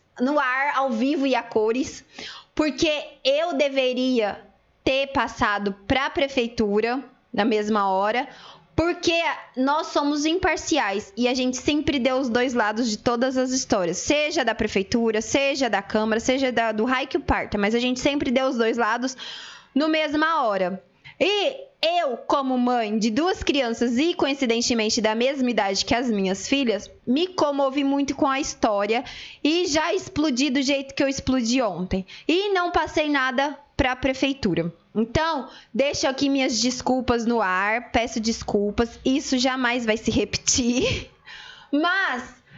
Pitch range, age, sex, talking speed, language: 230-295 Hz, 20-39, female, 150 wpm, Portuguese